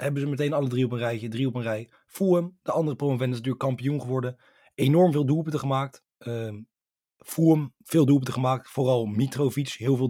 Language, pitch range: Dutch, 120-145 Hz